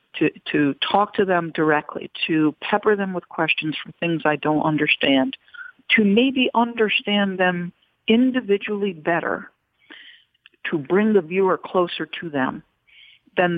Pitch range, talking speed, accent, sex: 170-225 Hz, 135 wpm, American, female